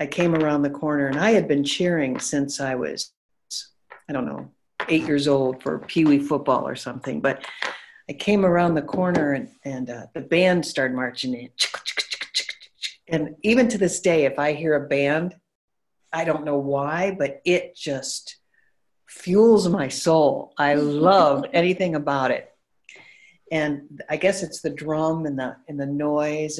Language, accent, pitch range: English, American, 140-180 Hz